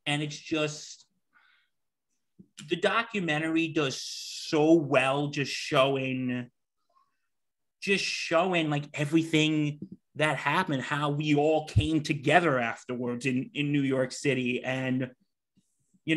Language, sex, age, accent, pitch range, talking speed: English, male, 30-49, American, 135-180 Hz, 110 wpm